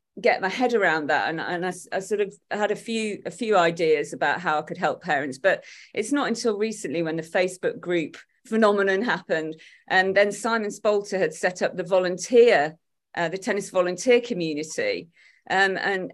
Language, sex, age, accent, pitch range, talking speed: English, female, 40-59, British, 180-230 Hz, 185 wpm